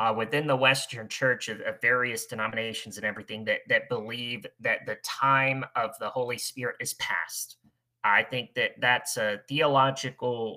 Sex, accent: male, American